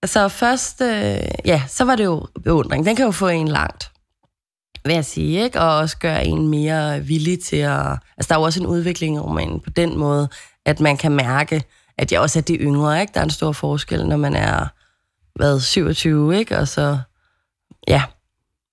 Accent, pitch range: native, 145-175 Hz